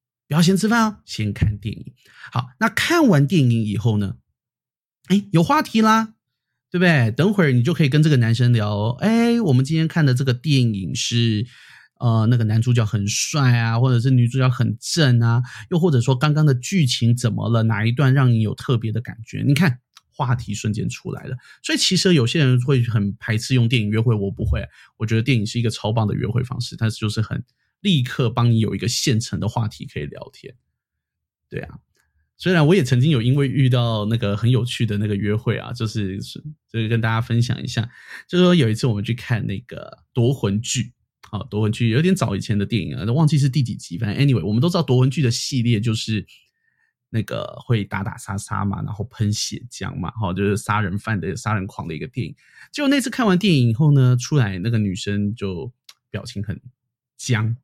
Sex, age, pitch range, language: male, 30-49, 110-140 Hz, Chinese